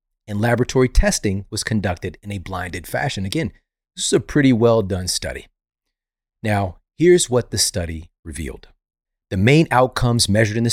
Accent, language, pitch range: American, English, 95-125 Hz